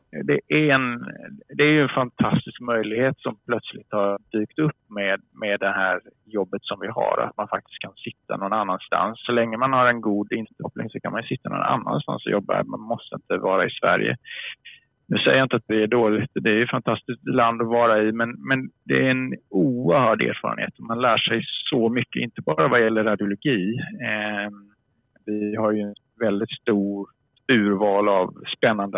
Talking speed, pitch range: 190 wpm, 105-125 Hz